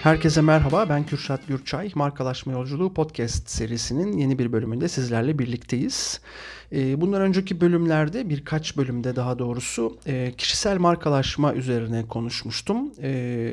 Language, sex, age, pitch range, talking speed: Turkish, male, 40-59, 125-165 Hz, 110 wpm